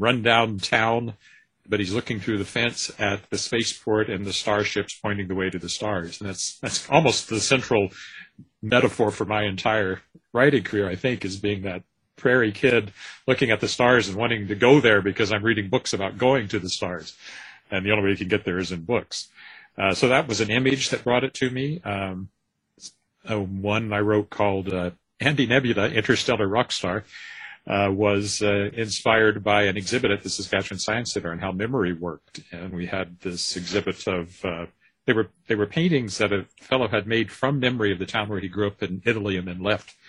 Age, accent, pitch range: 40-59, American, 100-120 Hz